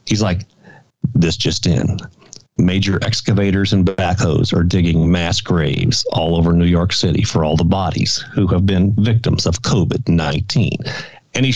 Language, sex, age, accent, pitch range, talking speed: English, male, 50-69, American, 100-125 Hz, 155 wpm